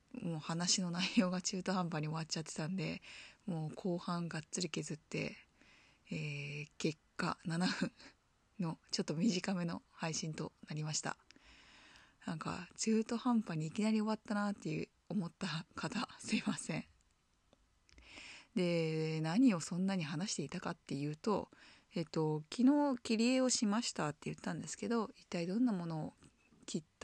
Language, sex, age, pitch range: Japanese, female, 20-39, 165-220 Hz